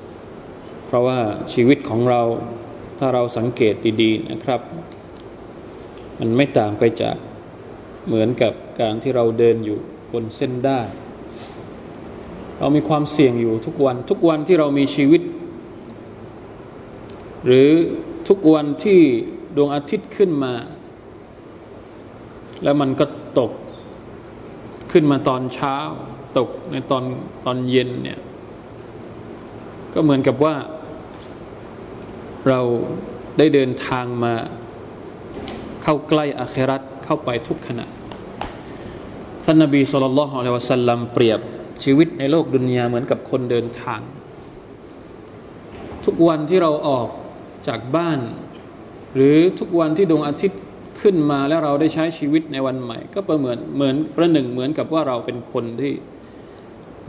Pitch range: 120-155 Hz